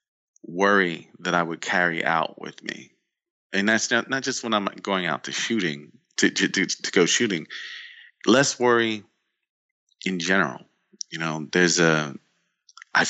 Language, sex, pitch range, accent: English, male, 80-110 Hz, American